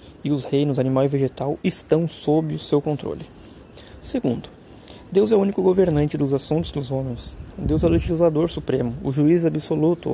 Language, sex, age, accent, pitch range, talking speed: Portuguese, male, 20-39, Brazilian, 120-150 Hz, 170 wpm